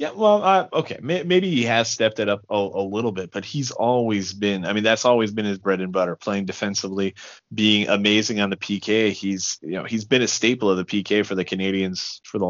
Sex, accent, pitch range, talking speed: male, American, 95-110 Hz, 235 wpm